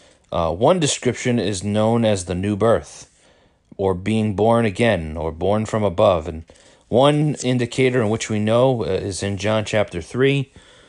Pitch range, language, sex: 100-135 Hz, English, male